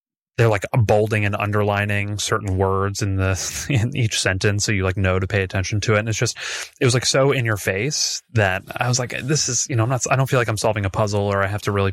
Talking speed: 270 wpm